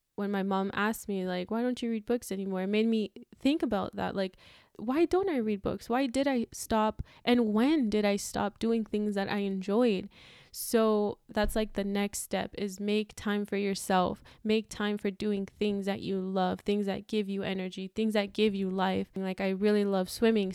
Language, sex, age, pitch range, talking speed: English, female, 10-29, 195-215 Hz, 210 wpm